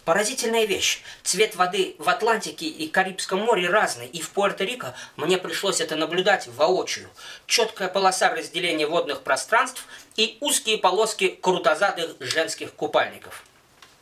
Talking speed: 125 wpm